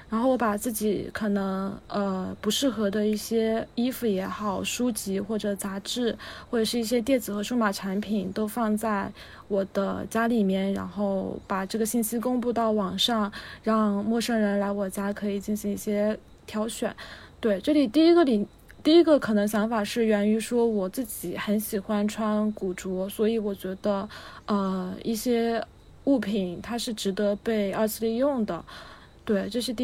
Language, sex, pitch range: Chinese, female, 205-235 Hz